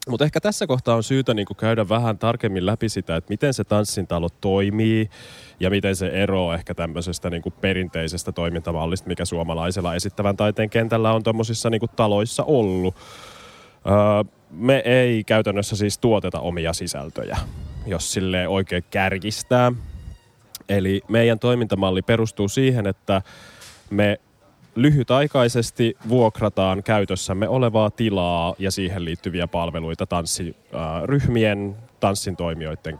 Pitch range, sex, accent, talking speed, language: 90-110 Hz, male, native, 120 wpm, Finnish